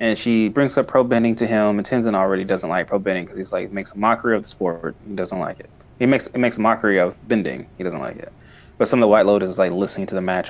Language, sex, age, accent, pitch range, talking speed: English, male, 20-39, American, 95-125 Hz, 280 wpm